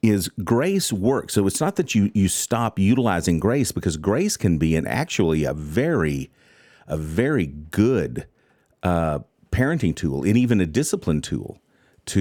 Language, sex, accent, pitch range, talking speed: English, male, American, 85-115 Hz, 155 wpm